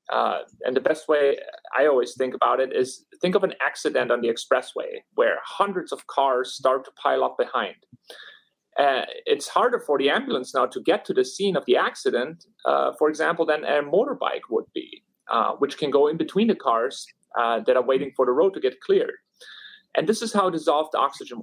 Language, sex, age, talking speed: English, male, 30-49, 205 wpm